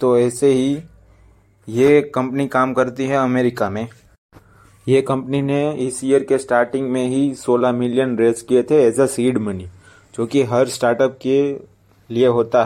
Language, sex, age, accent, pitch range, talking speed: Hindi, male, 20-39, native, 115-130 Hz, 165 wpm